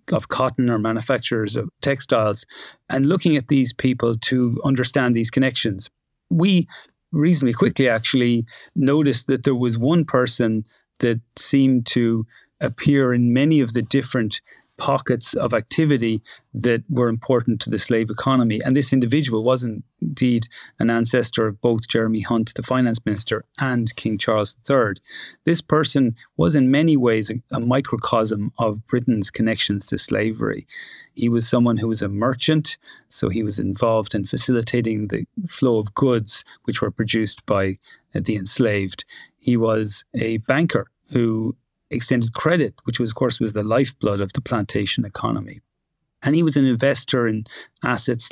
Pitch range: 110-135 Hz